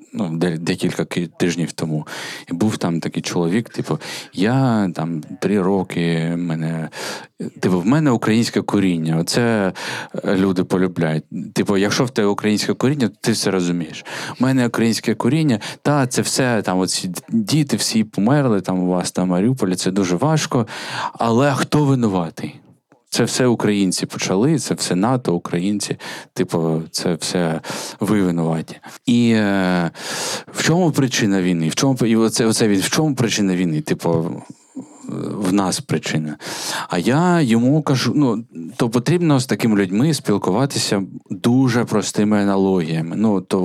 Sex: male